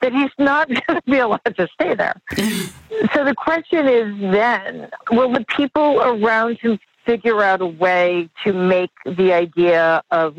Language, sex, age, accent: English, female, 50-69, American